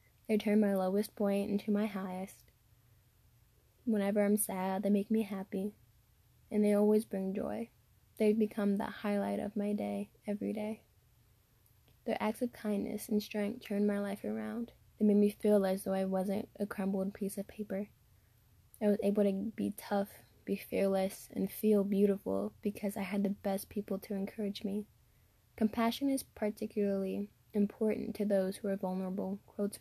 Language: English